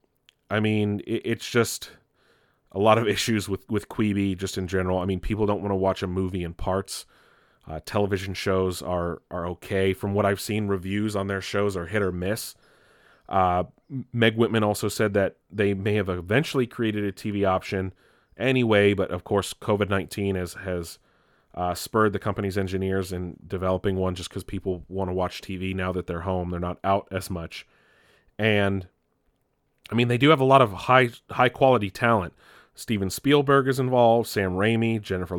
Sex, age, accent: male, 30-49, American